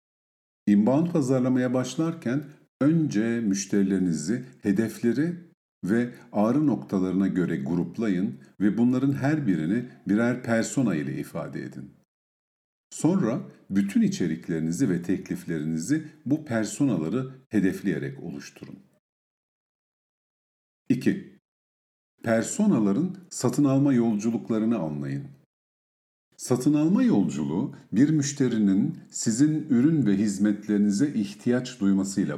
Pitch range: 95-130 Hz